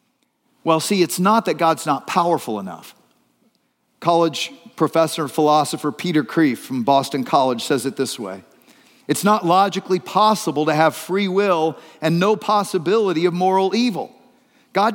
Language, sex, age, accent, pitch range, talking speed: English, male, 50-69, American, 140-195 Hz, 150 wpm